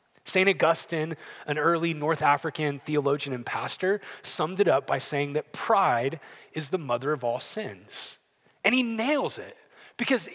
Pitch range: 155-225 Hz